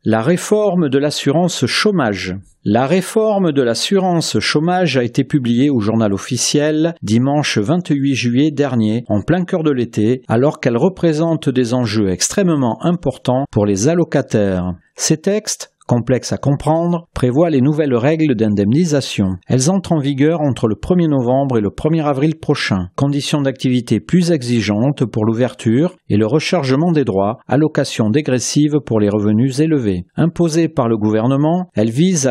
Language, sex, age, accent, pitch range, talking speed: French, male, 40-59, French, 115-160 Hz, 150 wpm